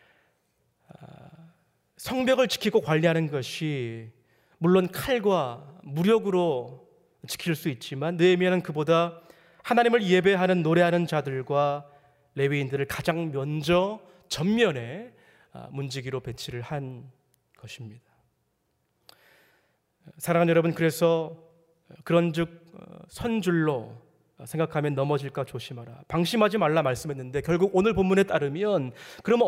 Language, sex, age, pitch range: Korean, male, 30-49, 145-205 Hz